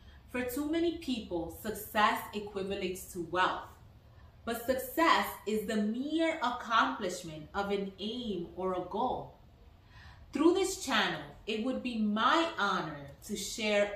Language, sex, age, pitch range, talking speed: English, female, 30-49, 165-235 Hz, 130 wpm